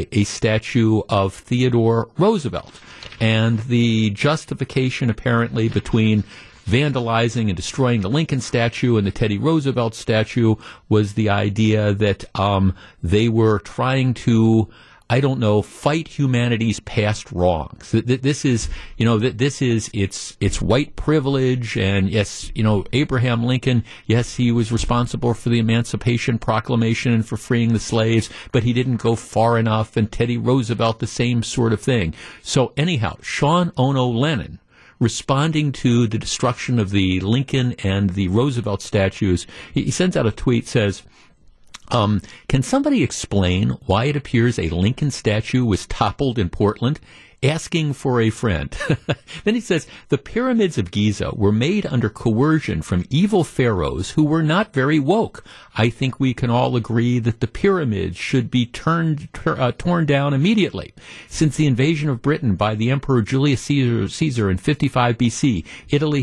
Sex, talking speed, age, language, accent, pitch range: male, 160 wpm, 50-69, English, American, 110-135 Hz